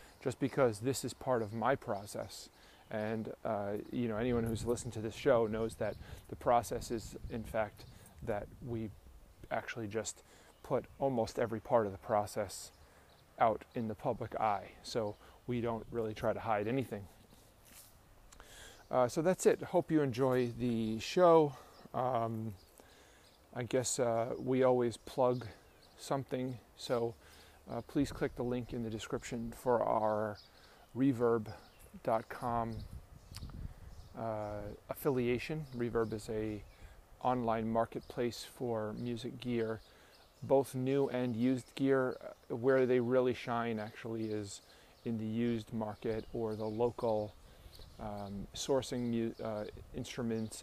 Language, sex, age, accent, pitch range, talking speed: English, male, 30-49, American, 105-125 Hz, 130 wpm